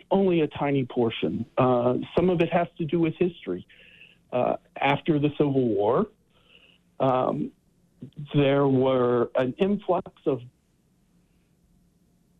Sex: male